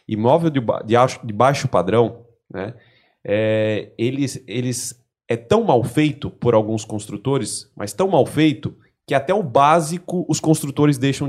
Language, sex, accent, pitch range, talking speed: Portuguese, male, Brazilian, 120-155 Hz, 130 wpm